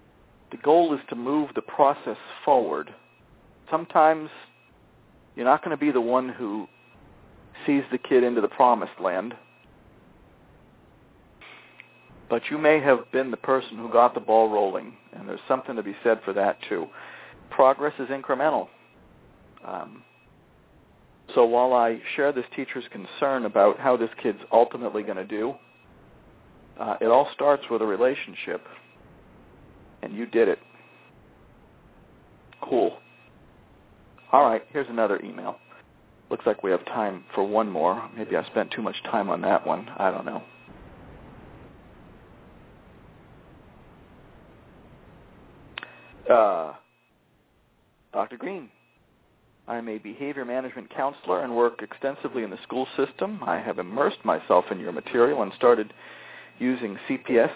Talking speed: 135 wpm